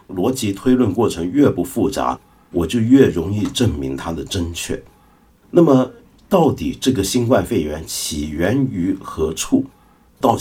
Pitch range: 85-130 Hz